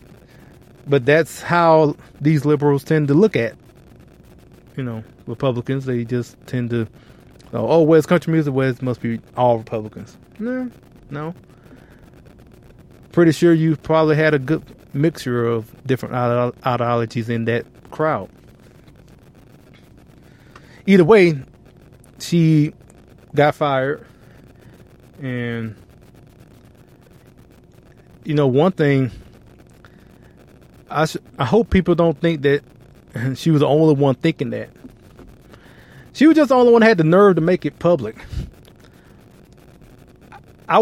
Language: English